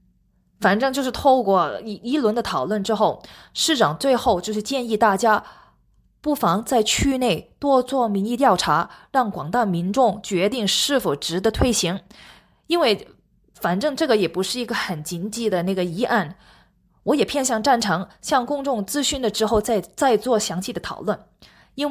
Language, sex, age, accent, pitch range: Chinese, female, 20-39, native, 195-250 Hz